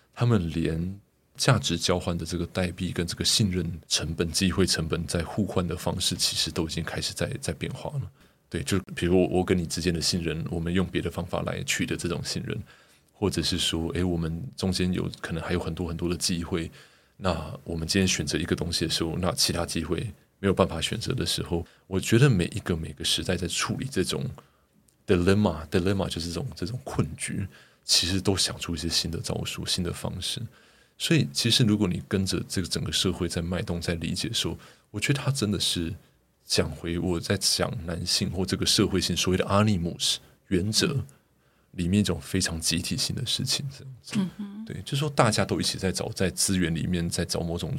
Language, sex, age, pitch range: Chinese, male, 30-49, 85-105 Hz